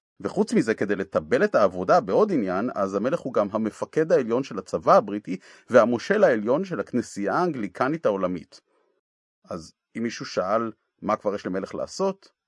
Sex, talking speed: male, 155 wpm